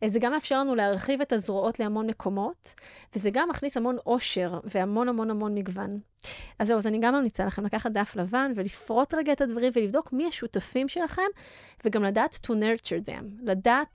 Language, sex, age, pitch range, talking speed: Hebrew, female, 30-49, 210-275 Hz, 180 wpm